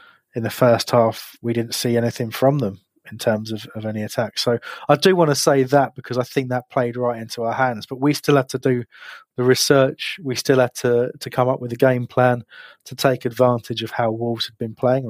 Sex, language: male, English